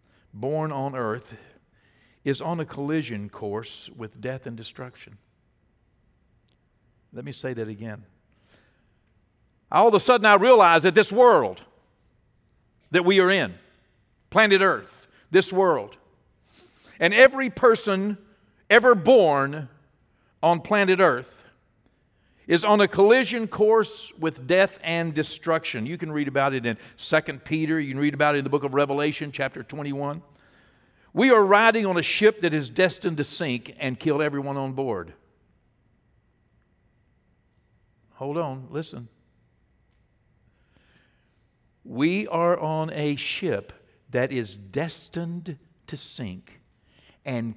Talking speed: 125 wpm